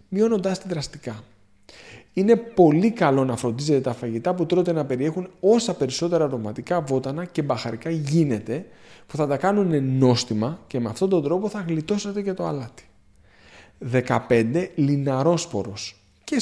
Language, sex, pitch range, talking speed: Greek, male, 125-190 Hz, 145 wpm